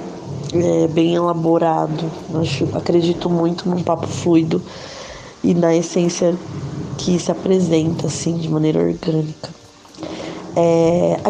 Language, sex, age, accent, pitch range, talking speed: Portuguese, female, 20-39, Brazilian, 150-180 Hz, 100 wpm